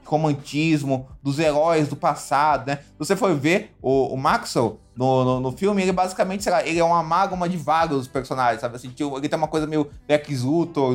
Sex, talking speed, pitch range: male, 215 wpm, 130-170 Hz